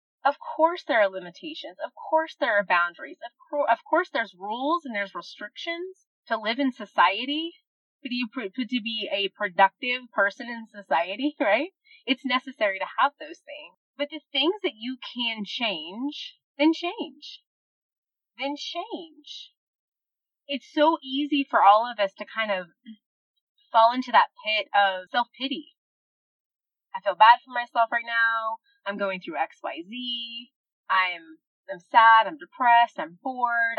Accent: American